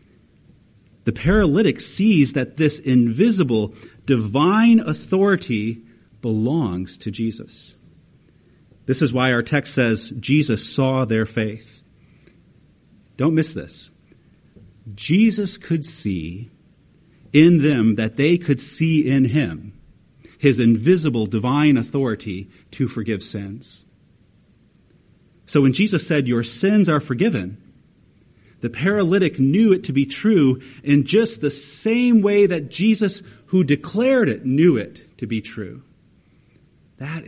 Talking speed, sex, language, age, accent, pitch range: 120 wpm, male, English, 40-59, American, 105-150 Hz